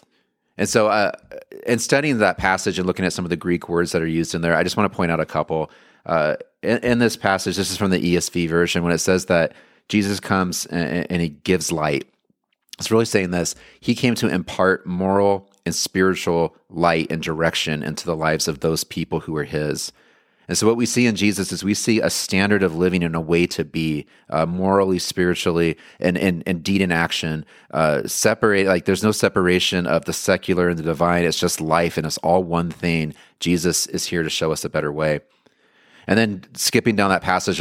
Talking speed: 215 wpm